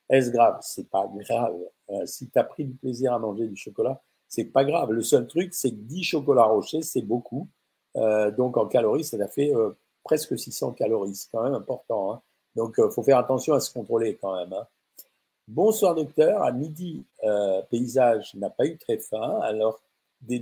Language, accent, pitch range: French, French, 120-155 Hz